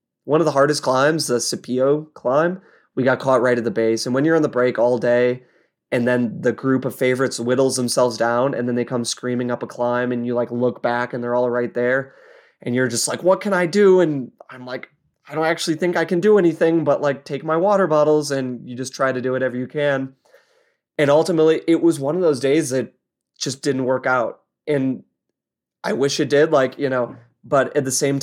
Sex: male